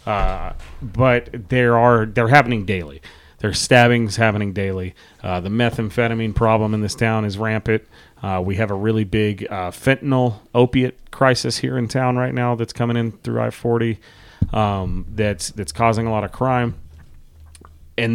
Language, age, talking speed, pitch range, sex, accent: English, 30-49, 160 wpm, 95-120 Hz, male, American